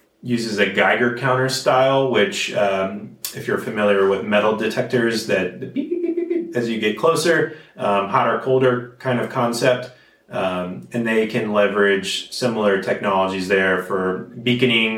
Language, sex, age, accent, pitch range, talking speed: English, male, 30-49, American, 95-115 Hz, 150 wpm